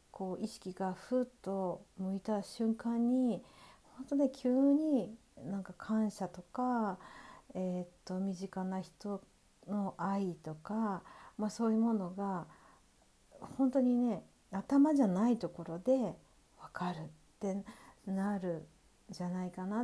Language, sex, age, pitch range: Japanese, female, 50-69, 185-245 Hz